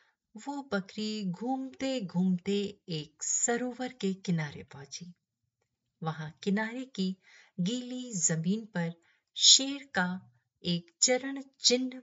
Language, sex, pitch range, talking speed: Hindi, female, 160-245 Hz, 100 wpm